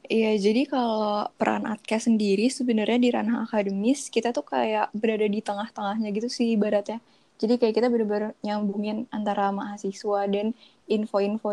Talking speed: 150 wpm